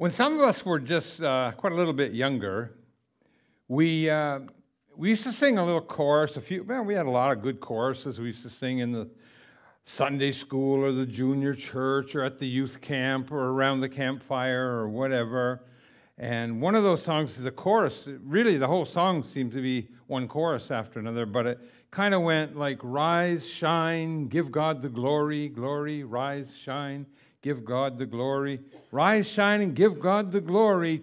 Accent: American